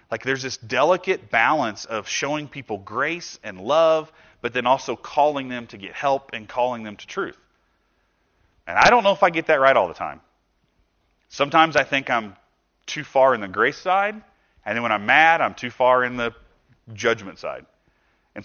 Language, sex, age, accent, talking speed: English, male, 30-49, American, 190 wpm